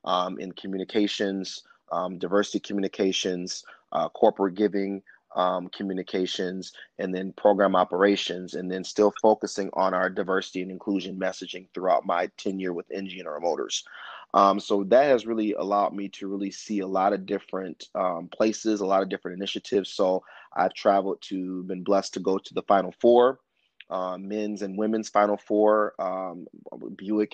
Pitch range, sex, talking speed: 95-105 Hz, male, 155 wpm